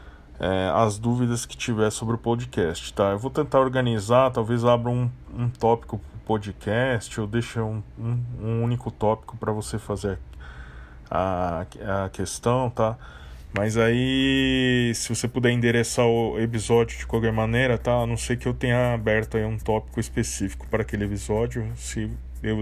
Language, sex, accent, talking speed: Portuguese, male, Brazilian, 165 wpm